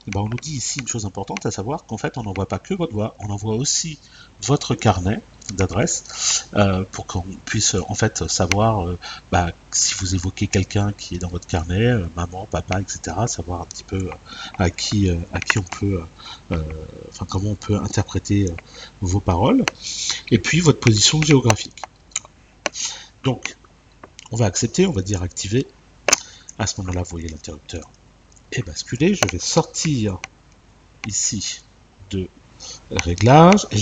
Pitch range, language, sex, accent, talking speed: 95-120 Hz, French, male, French, 160 wpm